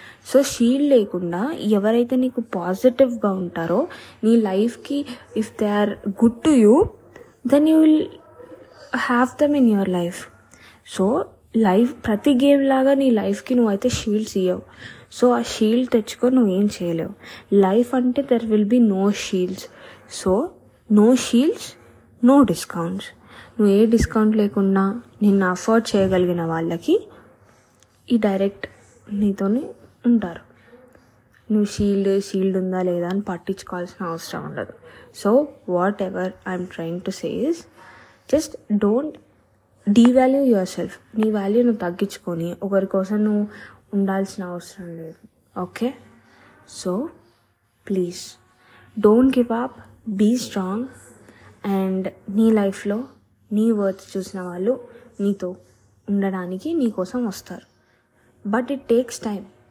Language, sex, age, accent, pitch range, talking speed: Telugu, female, 20-39, native, 190-245 Hz, 120 wpm